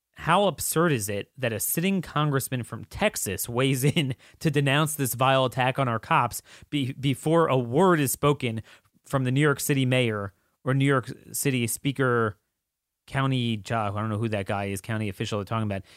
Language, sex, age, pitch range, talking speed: English, male, 30-49, 110-160 Hz, 185 wpm